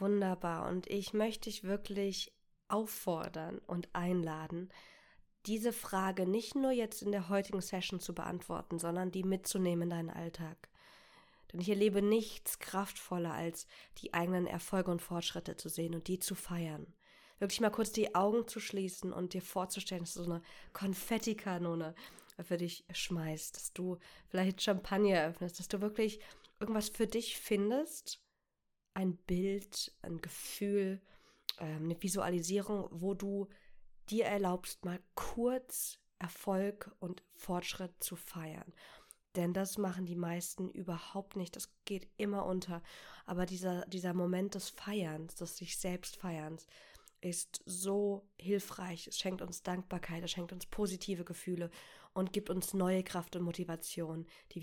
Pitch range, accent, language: 175-200 Hz, German, German